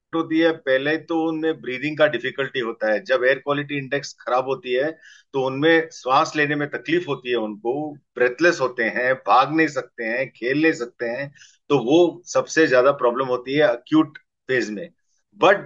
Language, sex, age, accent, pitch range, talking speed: Hindi, male, 50-69, native, 130-160 Hz, 185 wpm